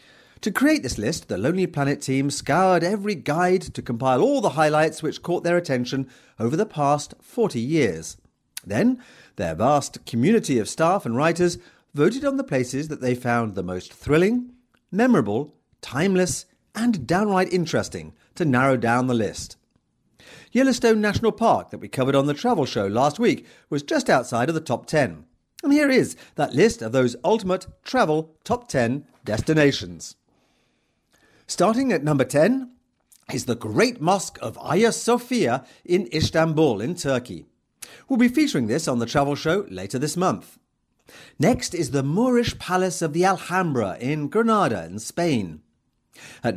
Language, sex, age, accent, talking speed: English, male, 40-59, British, 160 wpm